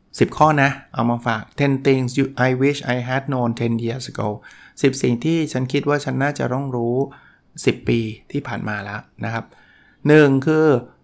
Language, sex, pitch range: Thai, male, 115-135 Hz